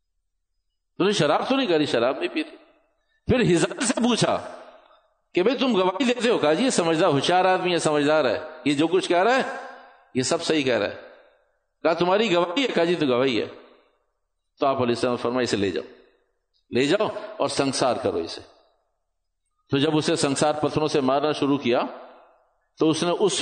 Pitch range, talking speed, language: 150-240 Hz, 170 wpm, Urdu